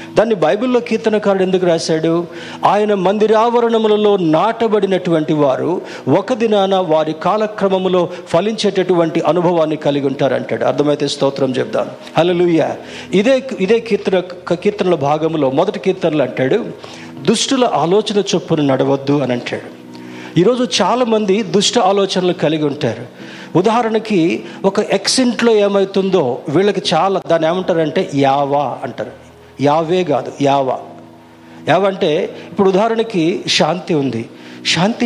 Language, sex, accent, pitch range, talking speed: Telugu, male, native, 155-205 Hz, 110 wpm